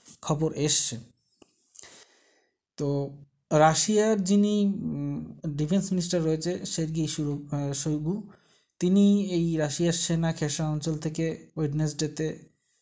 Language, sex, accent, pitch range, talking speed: Bengali, male, native, 150-185 Hz, 55 wpm